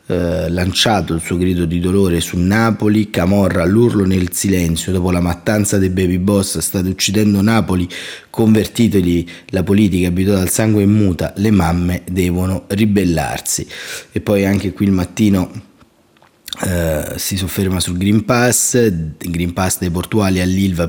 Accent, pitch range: native, 90-110 Hz